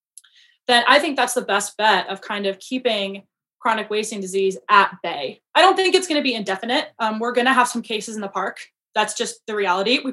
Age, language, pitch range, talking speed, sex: 20-39, English, 205-255 Hz, 230 wpm, female